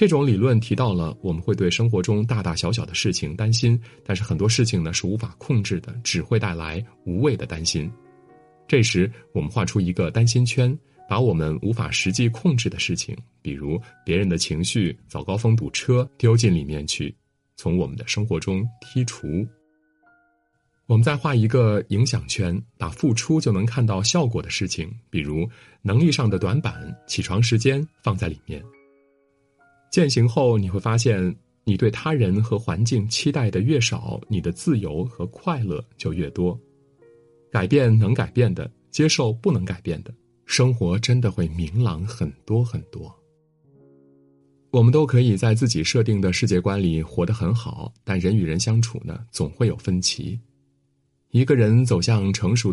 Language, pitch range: Chinese, 95-125 Hz